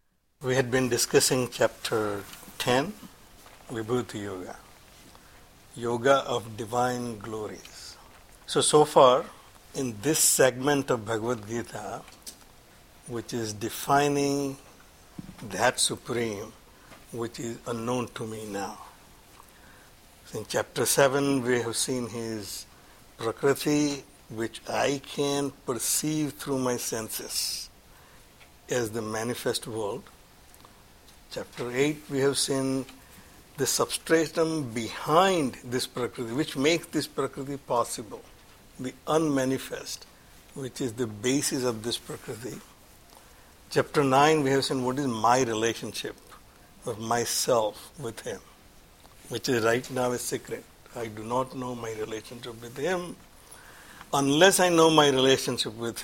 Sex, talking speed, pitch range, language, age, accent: male, 115 wpm, 115-140 Hz, English, 60-79, Indian